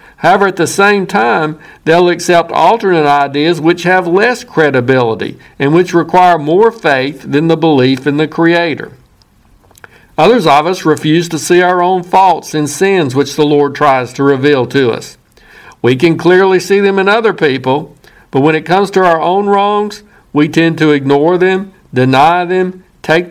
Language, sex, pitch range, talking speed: English, male, 145-180 Hz, 170 wpm